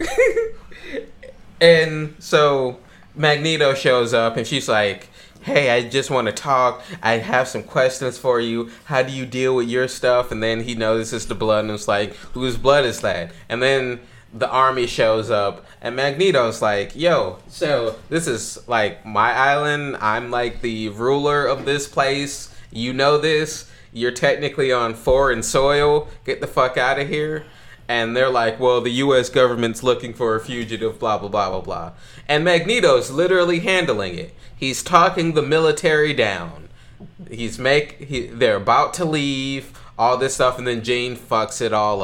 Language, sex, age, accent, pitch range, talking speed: English, male, 20-39, American, 115-140 Hz, 170 wpm